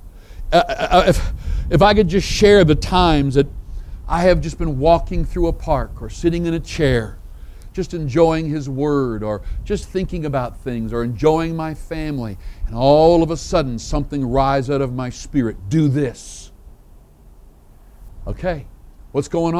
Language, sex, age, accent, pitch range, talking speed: English, male, 60-79, American, 135-200 Hz, 160 wpm